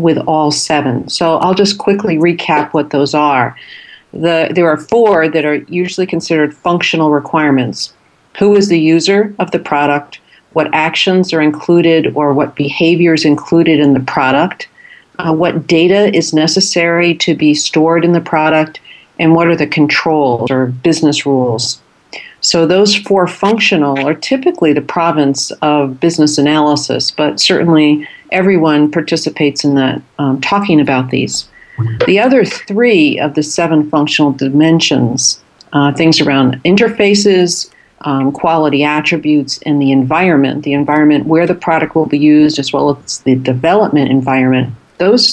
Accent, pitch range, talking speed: American, 145-175 Hz, 150 wpm